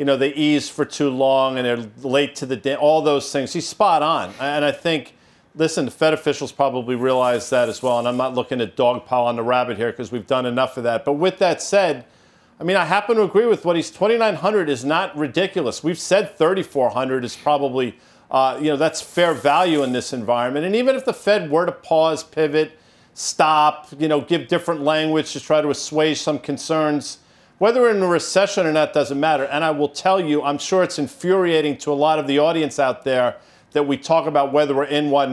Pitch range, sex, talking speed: 135-165 Hz, male, 225 wpm